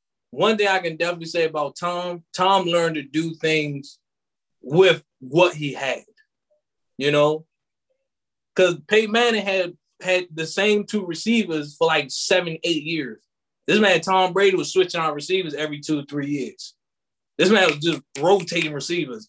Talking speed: 160 wpm